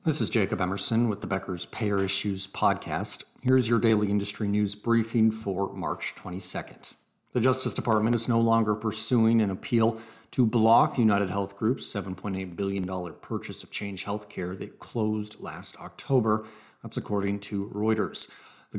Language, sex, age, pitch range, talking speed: English, male, 40-59, 100-115 Hz, 155 wpm